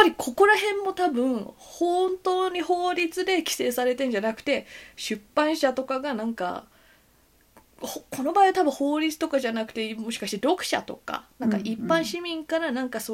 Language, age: Japanese, 20-39